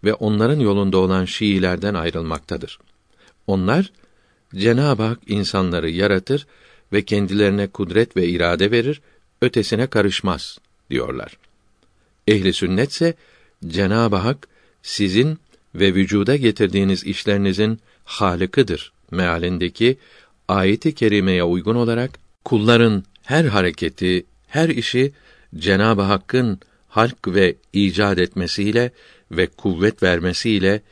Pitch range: 90-120 Hz